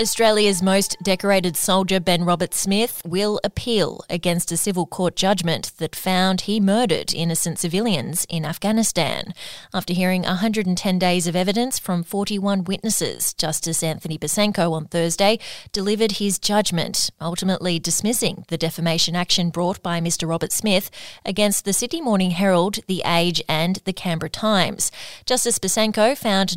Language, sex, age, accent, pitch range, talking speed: English, female, 20-39, Australian, 175-205 Hz, 140 wpm